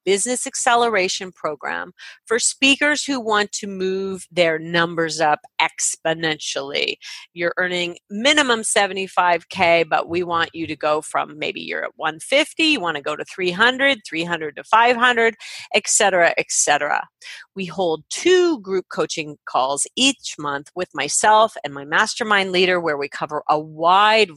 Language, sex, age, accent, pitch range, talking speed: English, female, 40-59, American, 155-225 Hz, 150 wpm